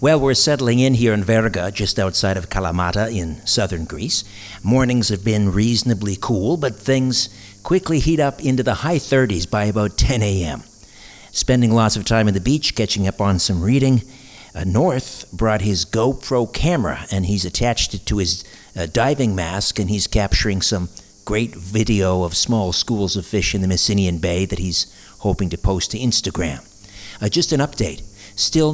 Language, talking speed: English, 180 wpm